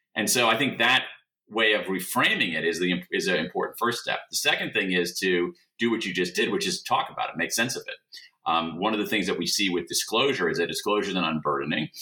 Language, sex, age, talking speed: English, male, 40-59, 250 wpm